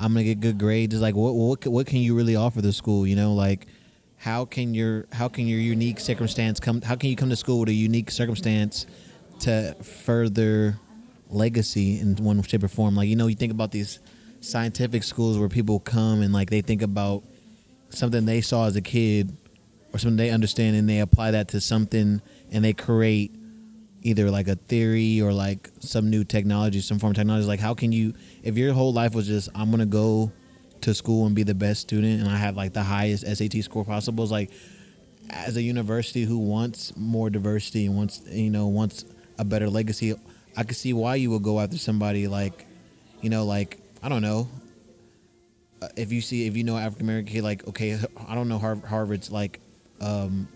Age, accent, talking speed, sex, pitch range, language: 20-39, American, 210 wpm, male, 105-115 Hz, English